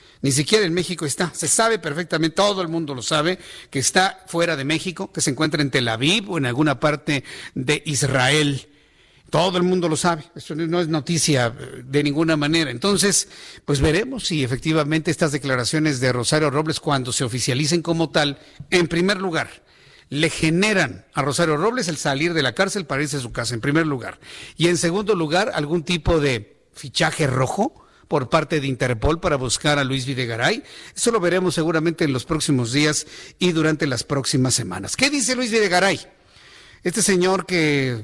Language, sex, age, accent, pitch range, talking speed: Spanish, male, 50-69, Mexican, 145-180 Hz, 185 wpm